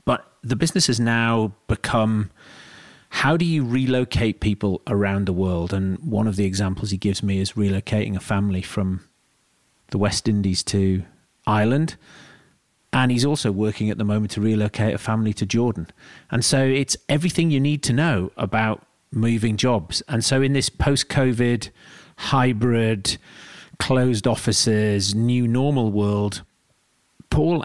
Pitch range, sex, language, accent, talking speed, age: 105-125 Hz, male, English, British, 150 wpm, 40-59